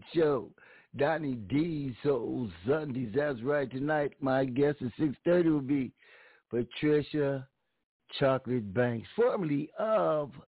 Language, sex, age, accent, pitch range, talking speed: English, male, 60-79, American, 115-140 Hz, 110 wpm